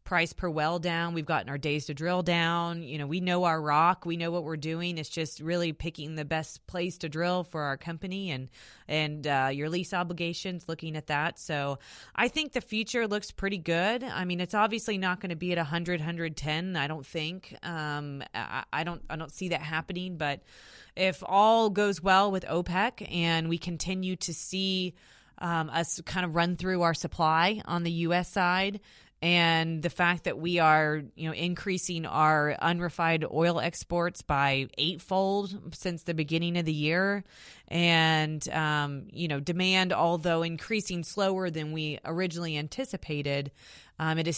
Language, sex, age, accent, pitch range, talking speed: English, female, 20-39, American, 155-180 Hz, 180 wpm